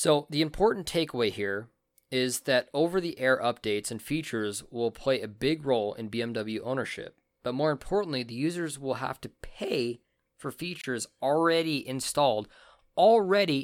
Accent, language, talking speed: American, English, 145 wpm